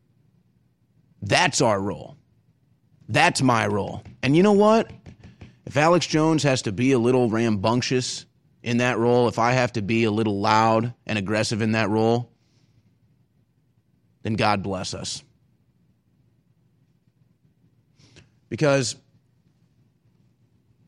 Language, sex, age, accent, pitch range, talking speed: English, male, 30-49, American, 110-140 Hz, 115 wpm